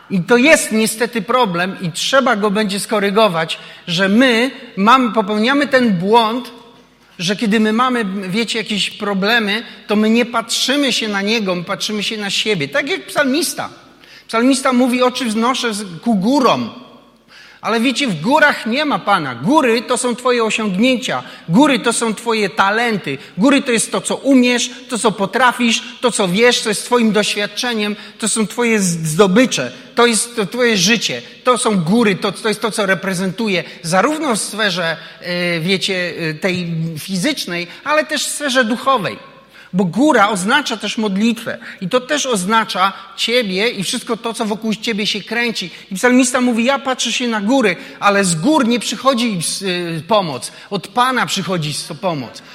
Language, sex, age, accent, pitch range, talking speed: Polish, male, 40-59, native, 205-260 Hz, 160 wpm